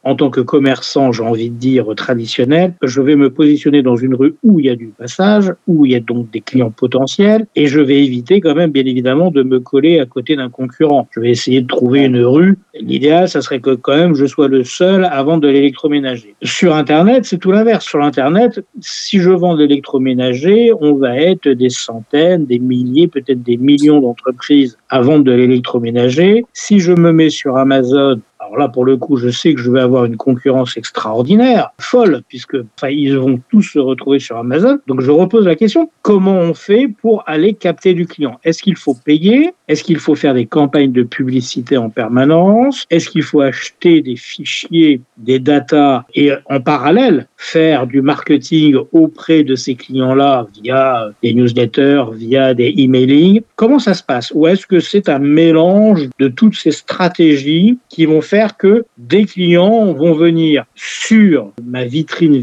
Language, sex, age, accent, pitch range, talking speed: French, male, 50-69, French, 130-180 Hz, 190 wpm